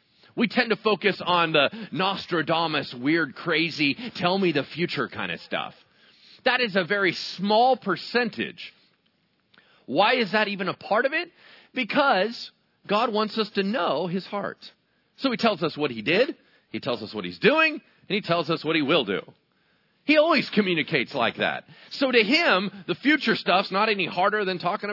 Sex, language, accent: male, English, American